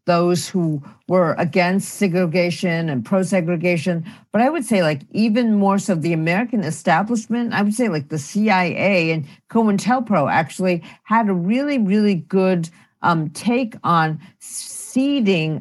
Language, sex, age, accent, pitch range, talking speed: English, female, 50-69, American, 160-200 Hz, 140 wpm